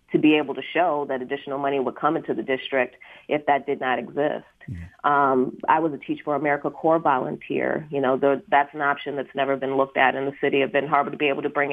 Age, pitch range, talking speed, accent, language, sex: 30-49, 135-150 Hz, 245 wpm, American, English, female